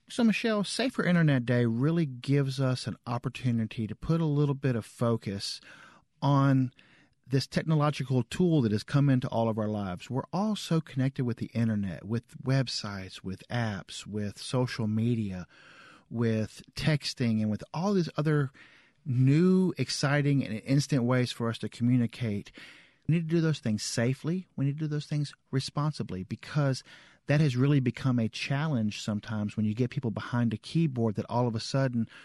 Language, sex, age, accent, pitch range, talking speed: English, male, 50-69, American, 110-145 Hz, 175 wpm